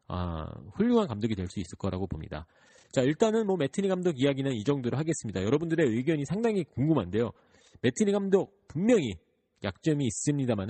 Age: 40-59